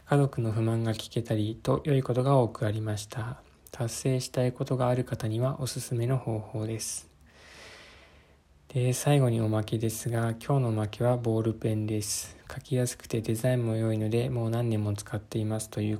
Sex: male